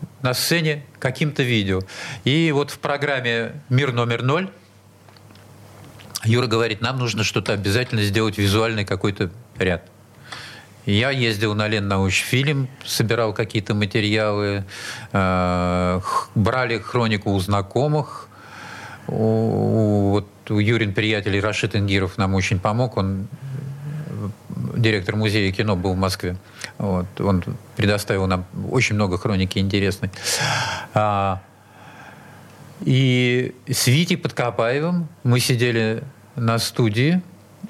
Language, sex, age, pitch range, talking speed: Russian, male, 40-59, 105-130 Hz, 105 wpm